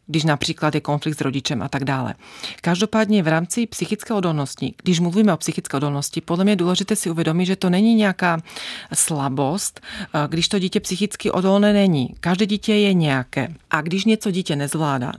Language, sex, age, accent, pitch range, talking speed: Czech, female, 40-59, native, 160-205 Hz, 175 wpm